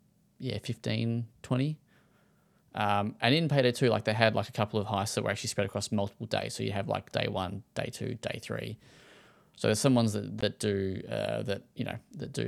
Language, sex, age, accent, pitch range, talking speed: English, male, 20-39, Australian, 100-120 Hz, 220 wpm